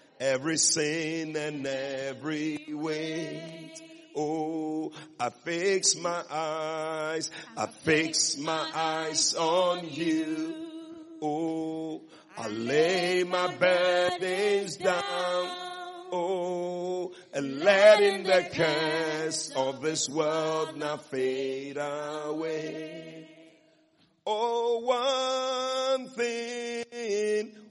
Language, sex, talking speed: English, male, 80 wpm